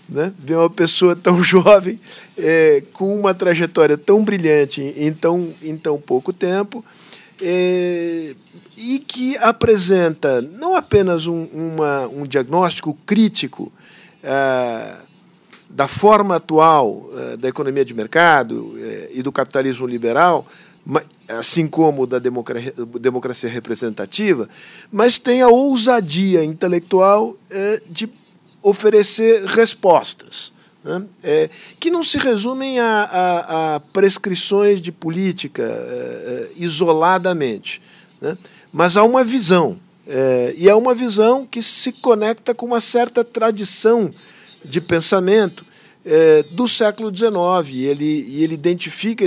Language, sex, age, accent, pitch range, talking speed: Portuguese, male, 50-69, Brazilian, 165-225 Hz, 120 wpm